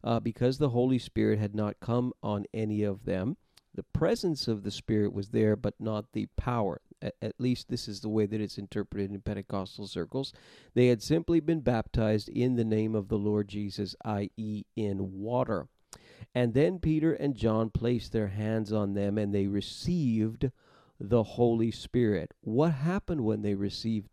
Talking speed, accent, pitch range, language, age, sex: 180 wpm, American, 105-130 Hz, English, 50-69, male